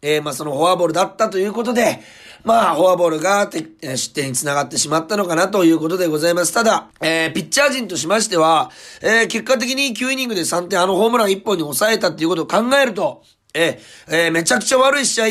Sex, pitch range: male, 170-225 Hz